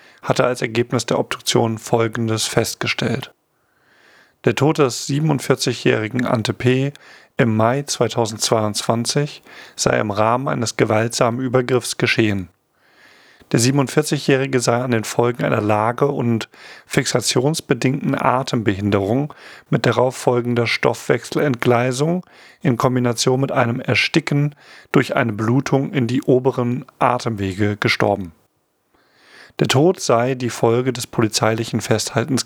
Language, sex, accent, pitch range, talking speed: German, male, German, 115-135 Hz, 105 wpm